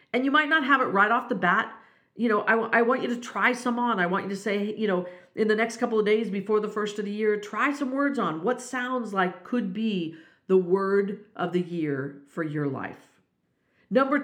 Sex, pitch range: female, 195-255 Hz